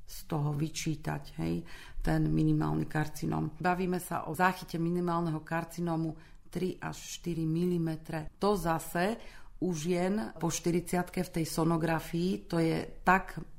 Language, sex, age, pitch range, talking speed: Slovak, female, 40-59, 155-180 Hz, 130 wpm